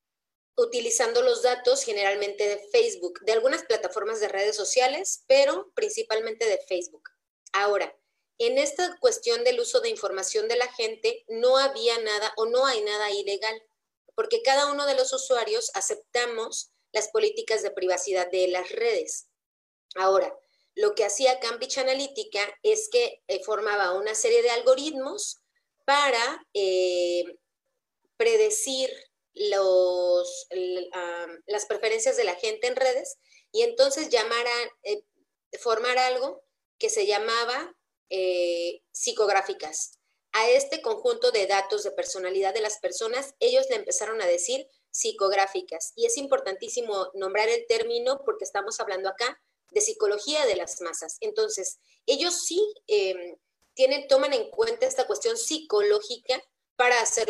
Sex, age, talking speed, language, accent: female, 30-49, 135 wpm, Spanish, Mexican